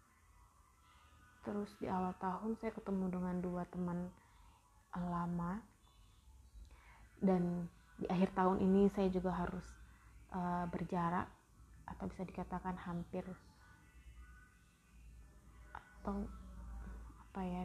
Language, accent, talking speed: Indonesian, native, 90 wpm